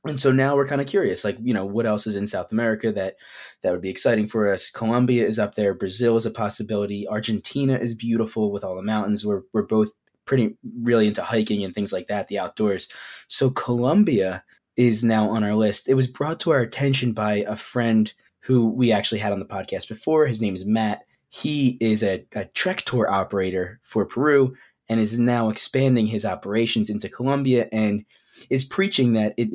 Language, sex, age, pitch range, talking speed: English, male, 20-39, 105-130 Hz, 205 wpm